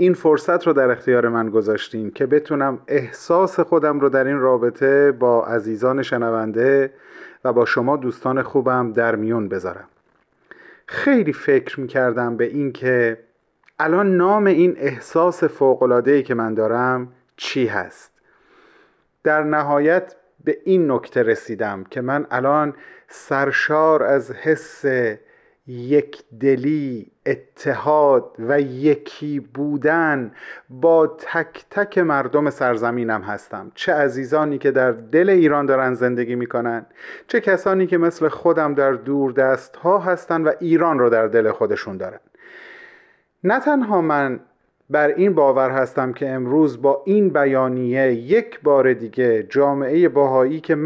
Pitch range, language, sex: 125-165 Hz, Persian, male